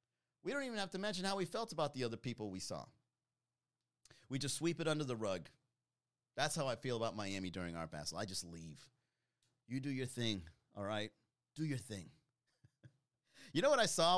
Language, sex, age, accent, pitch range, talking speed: English, male, 30-49, American, 115-150 Hz, 205 wpm